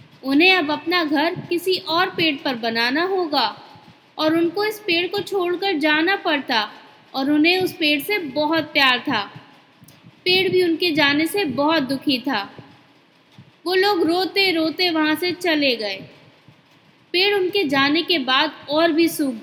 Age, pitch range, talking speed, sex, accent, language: 20-39, 295-375 Hz, 155 wpm, female, native, Hindi